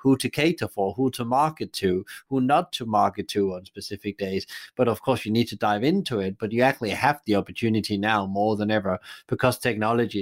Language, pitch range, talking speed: English, 105-130 Hz, 215 wpm